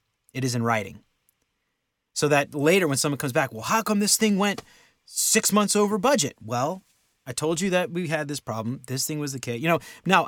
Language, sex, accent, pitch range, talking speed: English, male, American, 110-150 Hz, 220 wpm